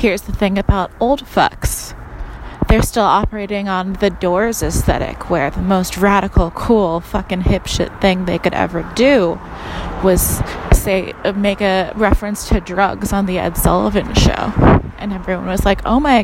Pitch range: 180-230 Hz